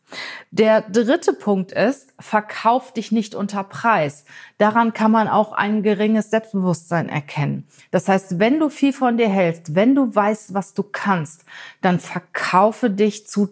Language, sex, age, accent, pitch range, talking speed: German, female, 30-49, German, 180-225 Hz, 155 wpm